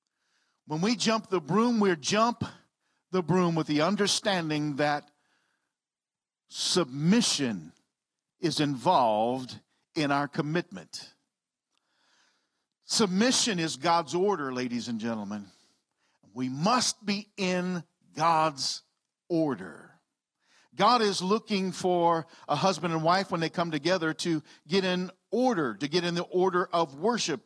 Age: 50-69